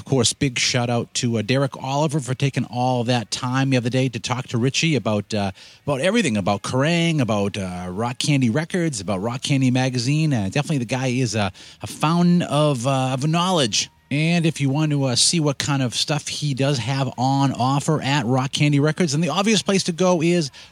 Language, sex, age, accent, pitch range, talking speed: English, male, 30-49, American, 120-155 Hz, 215 wpm